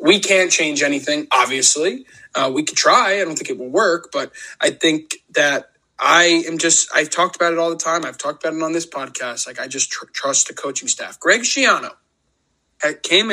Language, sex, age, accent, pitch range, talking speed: English, male, 20-39, American, 145-195 Hz, 210 wpm